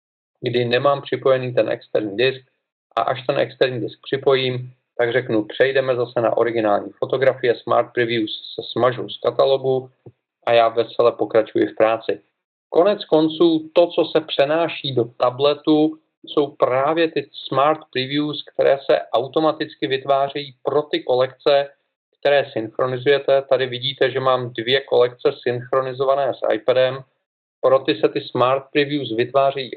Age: 40-59